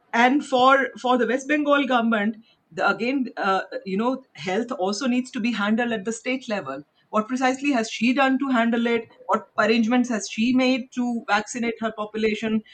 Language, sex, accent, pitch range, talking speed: English, female, Indian, 195-255 Hz, 185 wpm